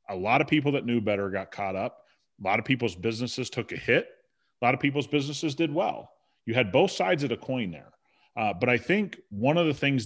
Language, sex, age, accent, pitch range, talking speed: English, male, 30-49, American, 100-135 Hz, 245 wpm